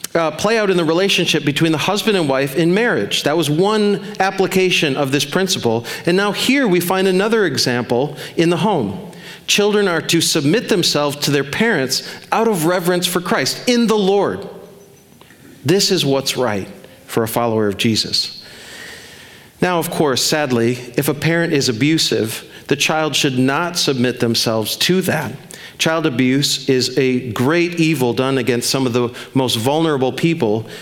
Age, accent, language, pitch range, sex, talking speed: 40-59, American, English, 130-175 Hz, male, 165 wpm